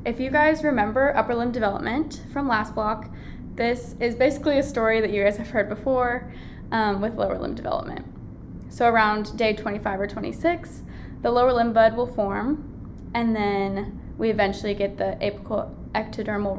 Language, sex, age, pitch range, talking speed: English, female, 10-29, 205-245 Hz, 165 wpm